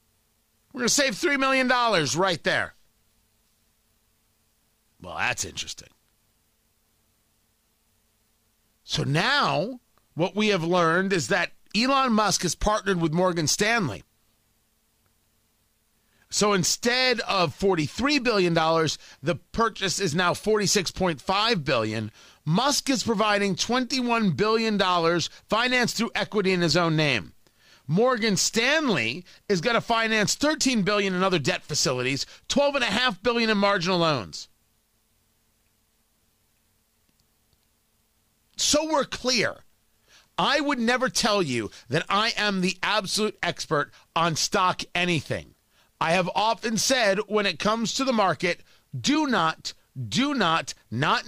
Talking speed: 115 wpm